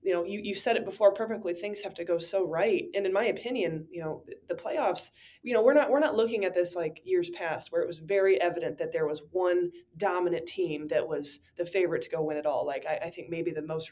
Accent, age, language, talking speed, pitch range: American, 20-39, English, 265 wpm, 165-215 Hz